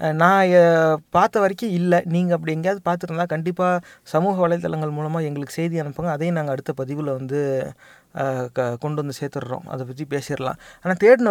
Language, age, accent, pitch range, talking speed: Tamil, 30-49, native, 155-190 Hz, 155 wpm